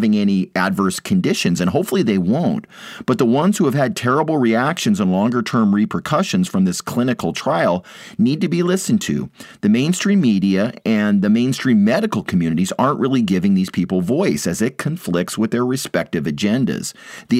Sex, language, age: male, English, 40-59